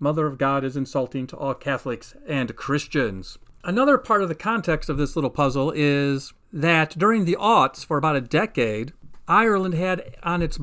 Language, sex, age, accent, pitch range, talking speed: English, male, 40-59, American, 130-165 Hz, 180 wpm